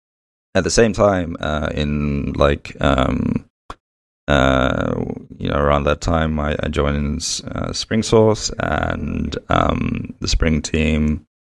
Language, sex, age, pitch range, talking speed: English, male, 30-49, 75-85 Hz, 130 wpm